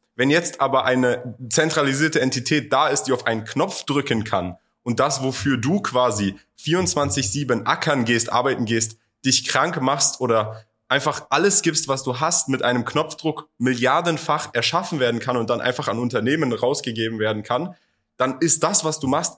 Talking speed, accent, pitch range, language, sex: 170 wpm, German, 115-145 Hz, German, male